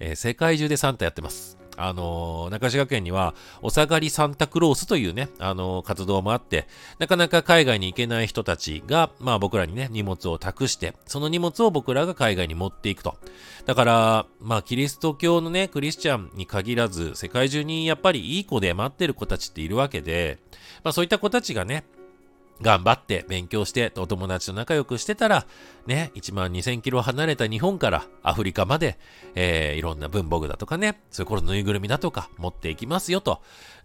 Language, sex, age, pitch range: Japanese, male, 40-59, 95-150 Hz